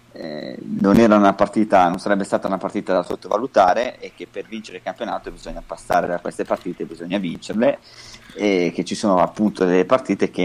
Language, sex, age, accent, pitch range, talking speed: Italian, male, 30-49, native, 90-105 Hz, 190 wpm